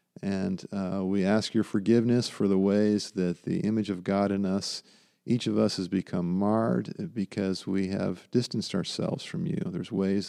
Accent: American